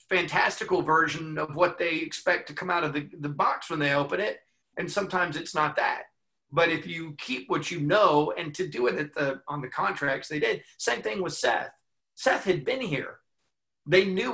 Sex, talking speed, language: male, 200 wpm, English